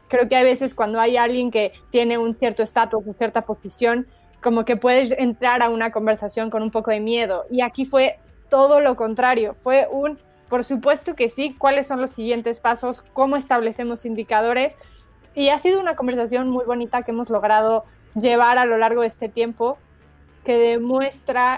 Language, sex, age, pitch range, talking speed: Spanish, female, 20-39, 215-245 Hz, 185 wpm